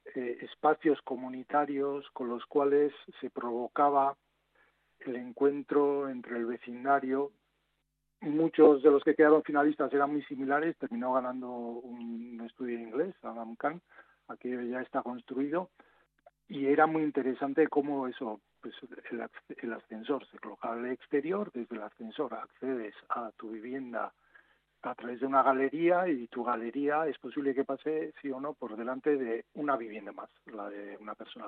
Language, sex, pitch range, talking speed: Spanish, male, 115-145 Hz, 155 wpm